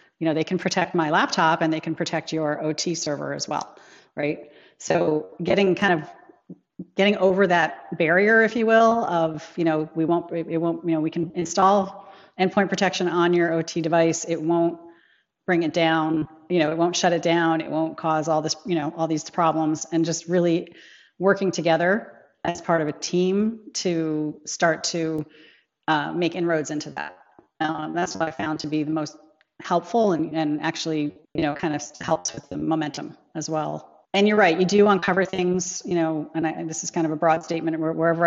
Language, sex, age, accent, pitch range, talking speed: English, female, 40-59, American, 160-175 Hz, 200 wpm